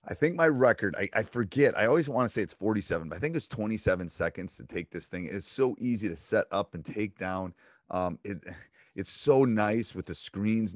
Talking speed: 230 wpm